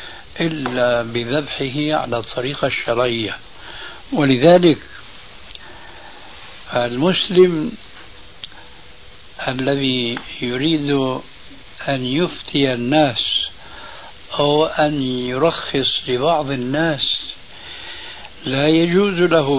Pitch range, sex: 125-155 Hz, male